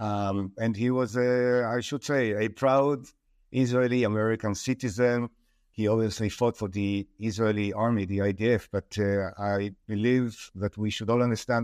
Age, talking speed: 50-69, 155 wpm